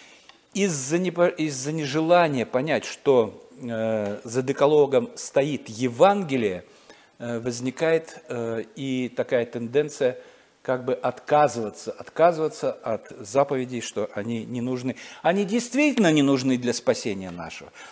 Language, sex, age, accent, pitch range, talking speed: Russian, male, 50-69, native, 120-160 Hz, 95 wpm